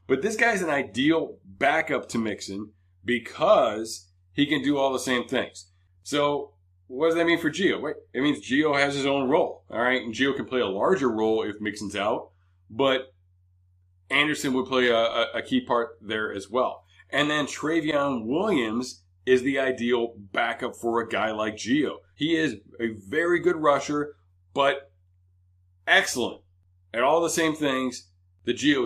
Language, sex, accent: English, male, American